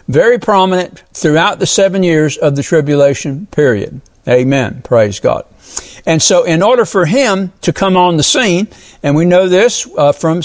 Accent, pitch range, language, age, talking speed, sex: American, 150-195 Hz, English, 60-79, 170 wpm, male